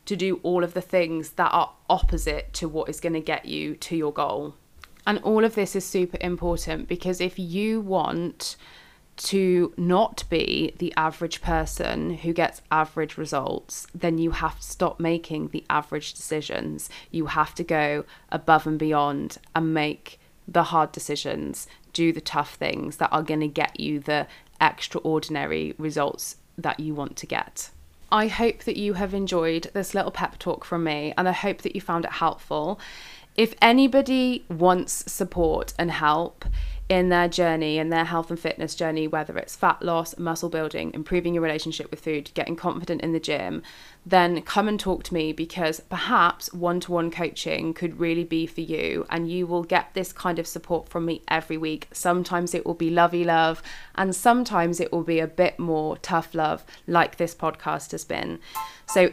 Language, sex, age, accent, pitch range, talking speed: English, female, 20-39, British, 155-180 Hz, 180 wpm